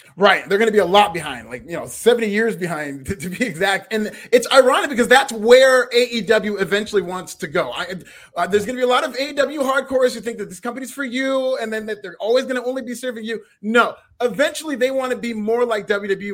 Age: 30-49